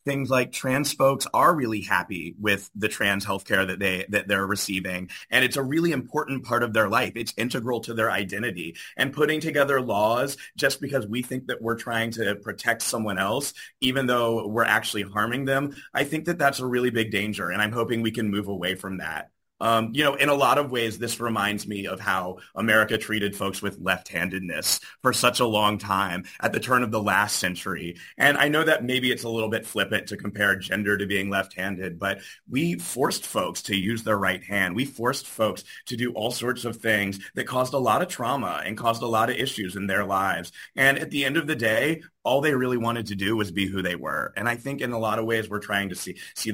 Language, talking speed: English, 230 wpm